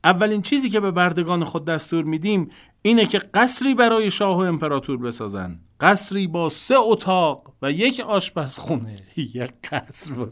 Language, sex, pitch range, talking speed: Persian, male, 100-165 Hz, 155 wpm